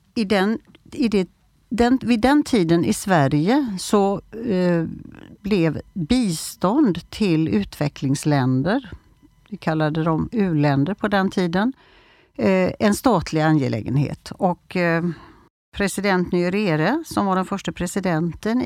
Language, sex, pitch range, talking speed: Swedish, female, 160-215 Hz, 90 wpm